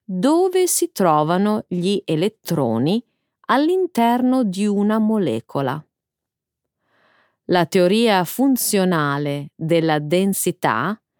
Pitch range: 165-255 Hz